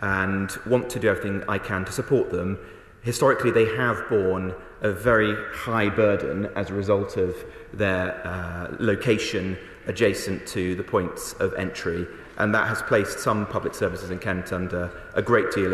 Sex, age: male, 30-49